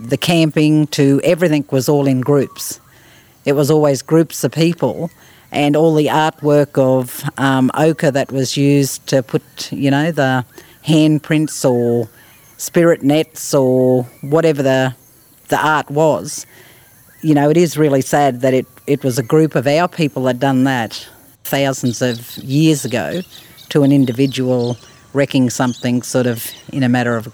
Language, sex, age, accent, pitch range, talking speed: English, female, 40-59, Australian, 125-155 Hz, 160 wpm